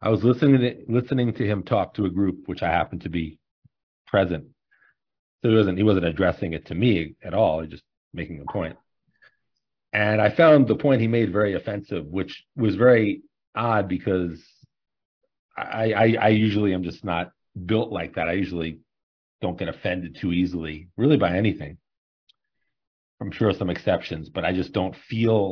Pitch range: 90-120 Hz